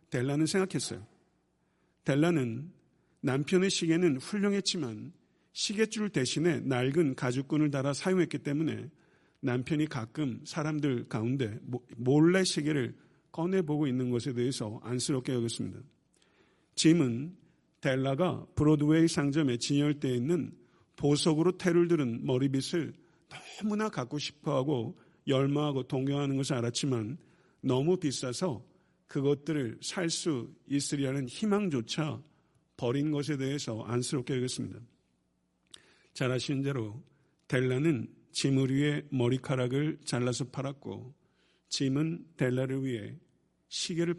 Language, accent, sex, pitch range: Korean, native, male, 125-165 Hz